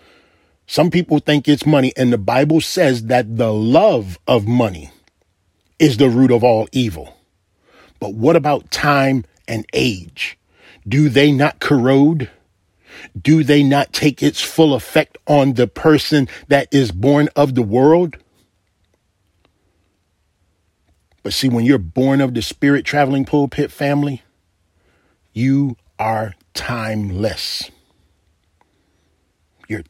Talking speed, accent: 120 wpm, American